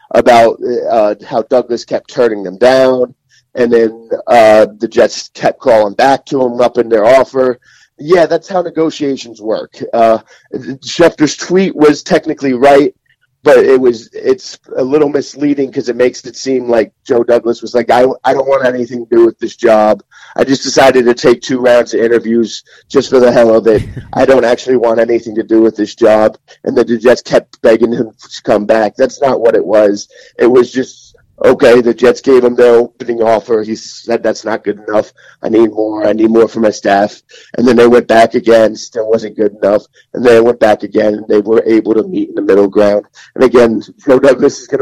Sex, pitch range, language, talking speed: male, 110-135 Hz, English, 210 wpm